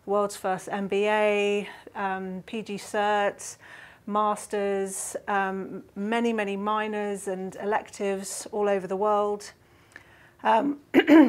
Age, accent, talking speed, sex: 40-59, British, 95 wpm, female